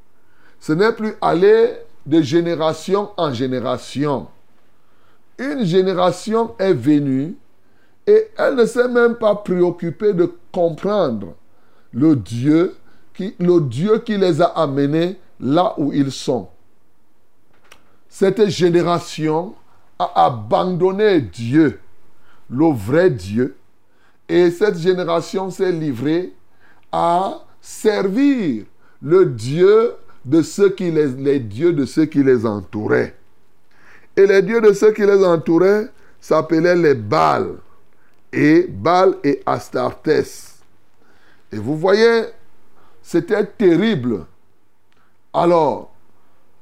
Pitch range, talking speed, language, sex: 140-205 Hz, 105 wpm, French, male